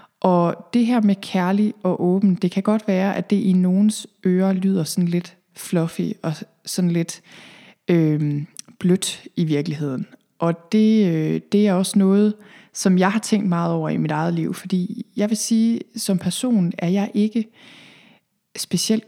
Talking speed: 170 wpm